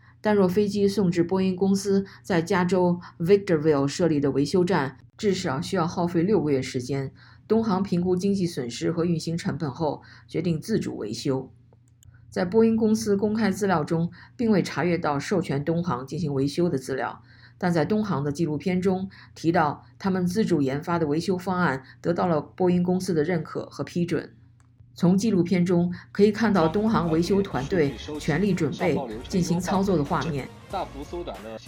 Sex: female